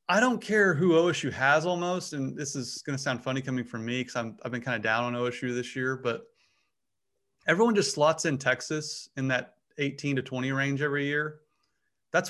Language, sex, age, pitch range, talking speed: English, male, 30-49, 120-150 Hz, 205 wpm